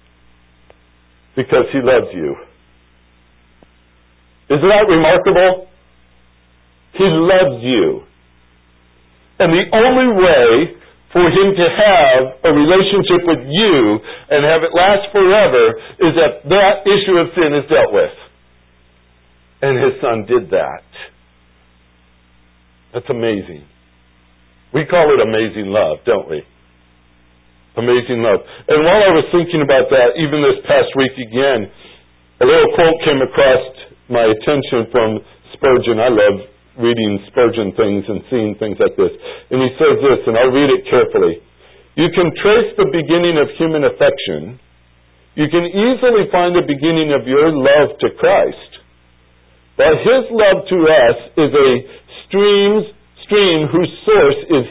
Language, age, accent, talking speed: English, 60-79, American, 135 wpm